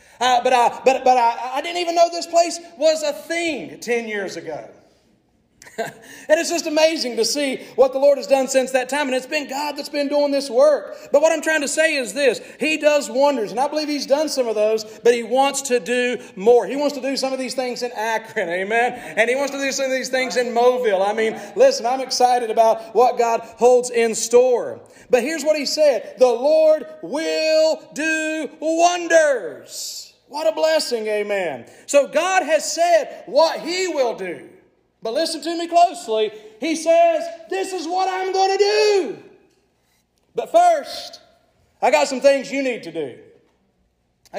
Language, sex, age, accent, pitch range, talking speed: English, male, 40-59, American, 235-315 Hz, 190 wpm